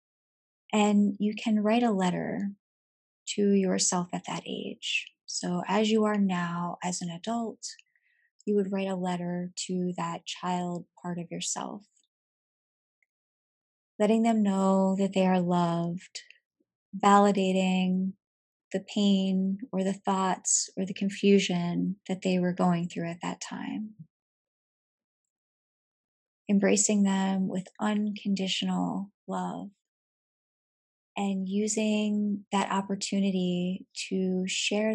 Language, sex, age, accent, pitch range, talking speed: English, female, 30-49, American, 180-200 Hz, 110 wpm